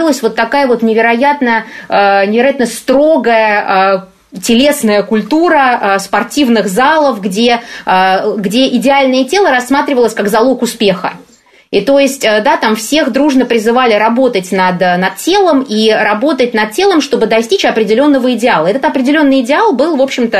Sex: female